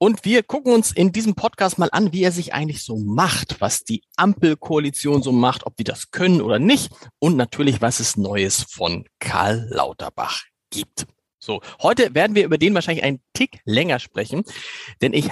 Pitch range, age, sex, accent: 135-180 Hz, 40-59, male, German